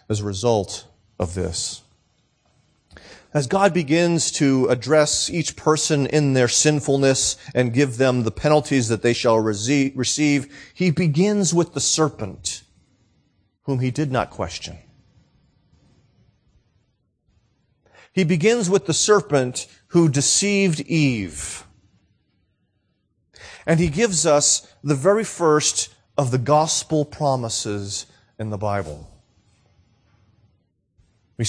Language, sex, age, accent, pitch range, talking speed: English, male, 40-59, American, 110-155 Hz, 110 wpm